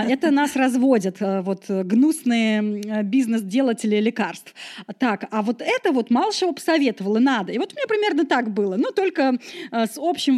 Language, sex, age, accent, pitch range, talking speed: Russian, female, 20-39, native, 210-270 Hz, 145 wpm